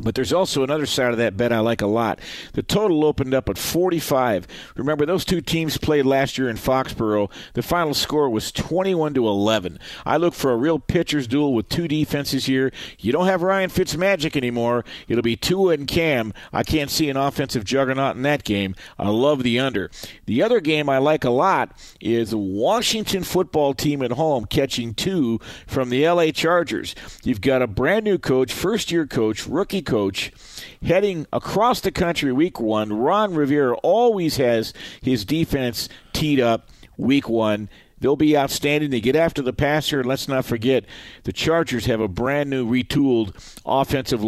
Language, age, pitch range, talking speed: English, 50-69, 115-155 Hz, 180 wpm